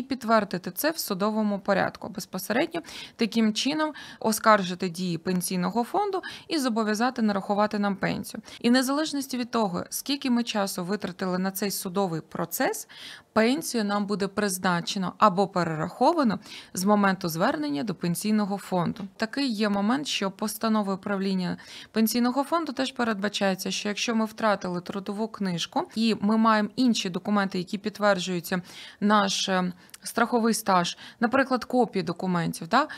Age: 20-39